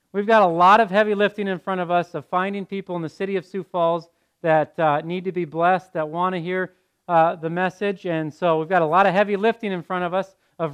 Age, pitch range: 40-59, 160-210 Hz